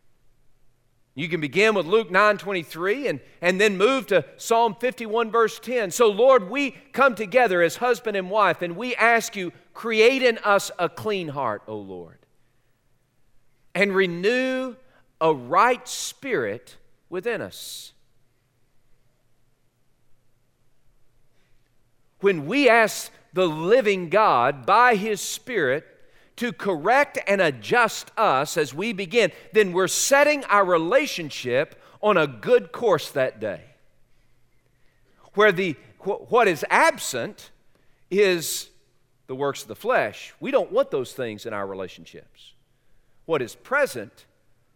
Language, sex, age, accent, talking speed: English, male, 40-59, American, 125 wpm